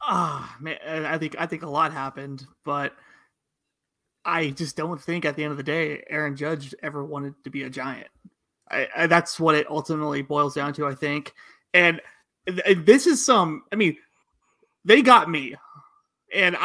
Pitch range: 155-195 Hz